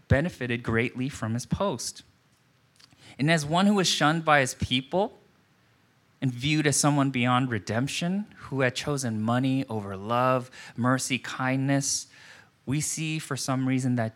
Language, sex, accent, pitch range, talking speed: English, male, American, 115-145 Hz, 145 wpm